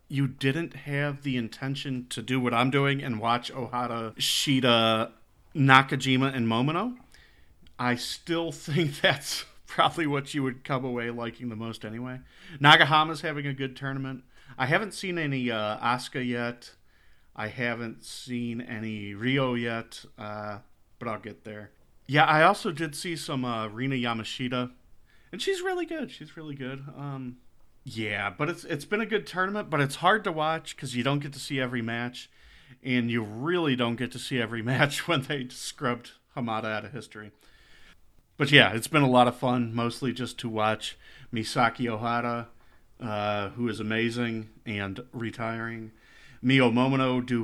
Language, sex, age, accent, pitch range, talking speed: English, male, 40-59, American, 115-140 Hz, 165 wpm